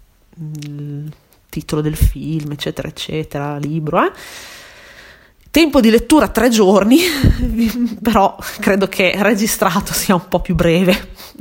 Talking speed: 115 wpm